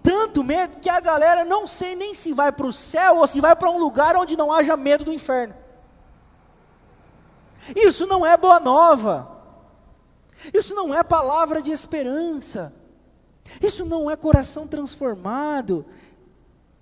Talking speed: 145 wpm